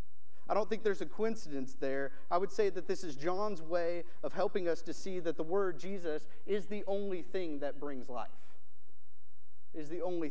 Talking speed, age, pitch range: 200 wpm, 30-49, 130-195 Hz